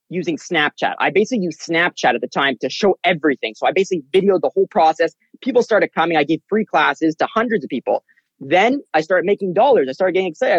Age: 20-39